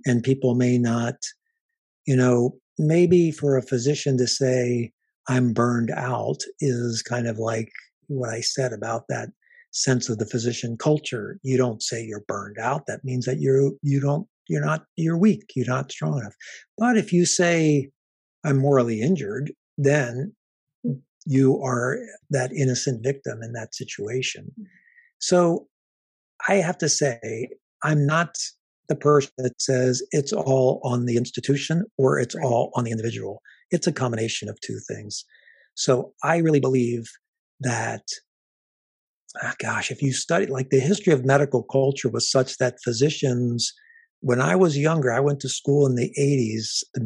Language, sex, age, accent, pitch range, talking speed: English, male, 50-69, American, 125-150 Hz, 160 wpm